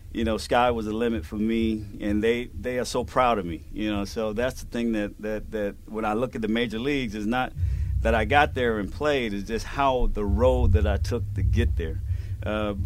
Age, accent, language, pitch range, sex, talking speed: 40-59, American, English, 80-110 Hz, male, 245 wpm